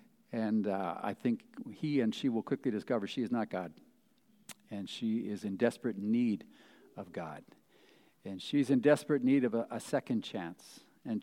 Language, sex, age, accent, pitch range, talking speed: English, male, 50-69, American, 125-190 Hz, 175 wpm